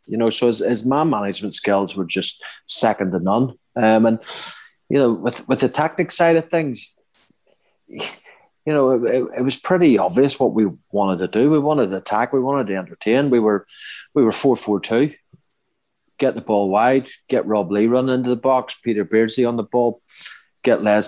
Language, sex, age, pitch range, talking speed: English, male, 30-49, 100-130 Hz, 190 wpm